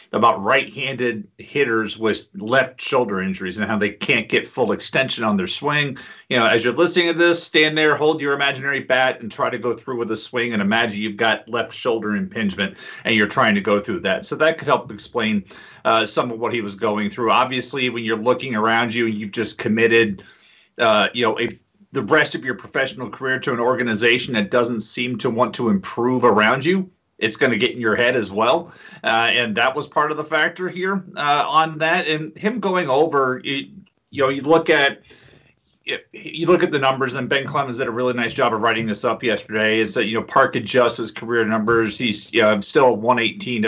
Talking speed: 225 wpm